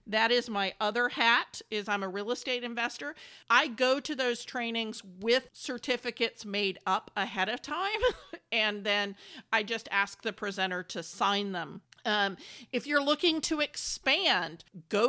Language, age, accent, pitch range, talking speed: English, 40-59, American, 210-260 Hz, 160 wpm